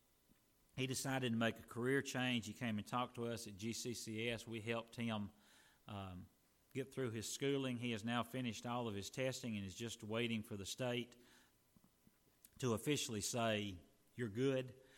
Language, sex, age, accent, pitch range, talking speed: English, male, 40-59, American, 105-125 Hz, 170 wpm